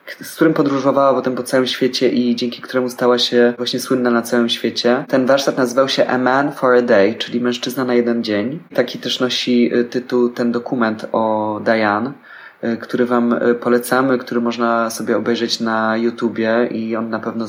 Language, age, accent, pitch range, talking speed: Polish, 20-39, native, 115-125 Hz, 180 wpm